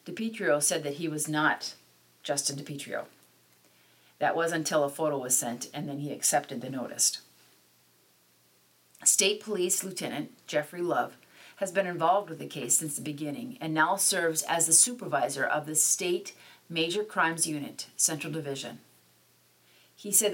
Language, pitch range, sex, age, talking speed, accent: English, 135-165 Hz, female, 40-59, 150 wpm, American